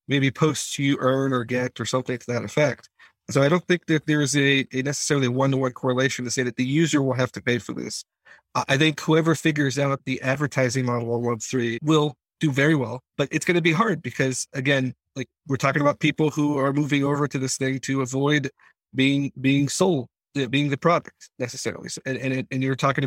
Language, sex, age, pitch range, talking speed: English, male, 40-59, 125-150 Hz, 220 wpm